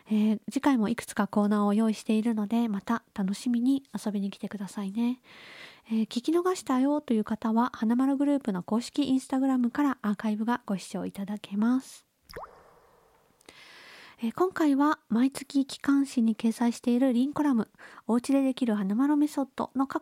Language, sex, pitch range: Japanese, female, 210-275 Hz